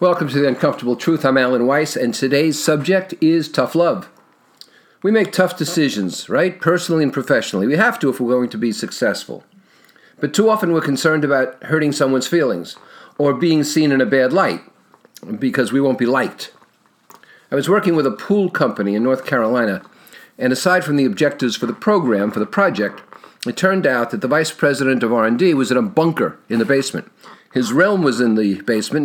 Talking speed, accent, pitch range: 195 wpm, American, 130-165 Hz